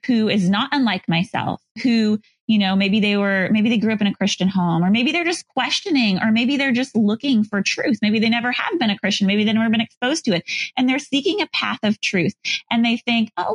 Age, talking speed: 20-39, 250 wpm